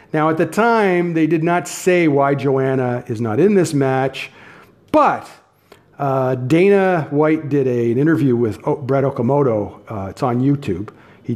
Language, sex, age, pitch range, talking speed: English, male, 50-69, 110-155 Hz, 170 wpm